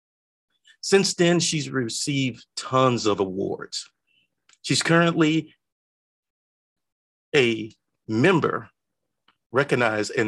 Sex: male